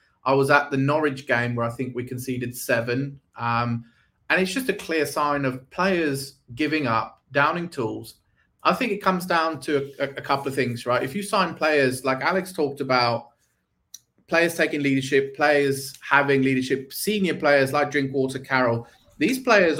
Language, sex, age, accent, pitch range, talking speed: English, male, 30-49, British, 125-150 Hz, 175 wpm